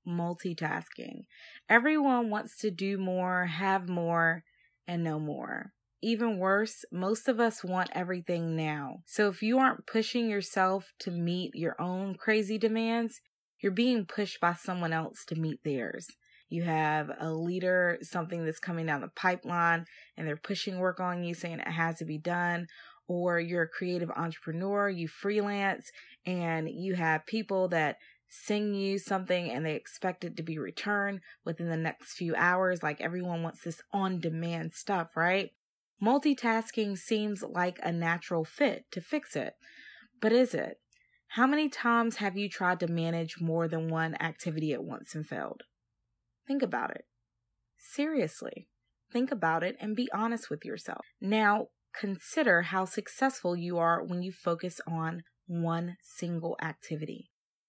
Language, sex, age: English, female, 20-39